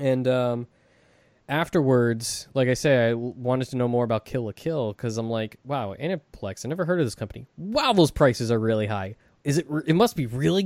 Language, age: English, 20-39